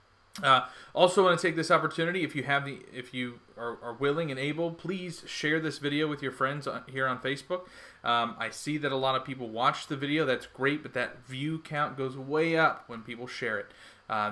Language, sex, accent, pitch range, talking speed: English, male, American, 125-155 Hz, 225 wpm